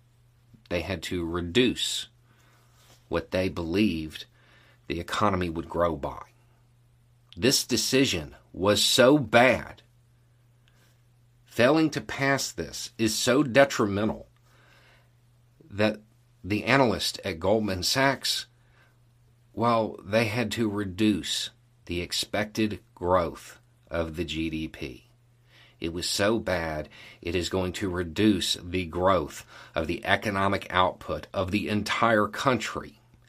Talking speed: 110 wpm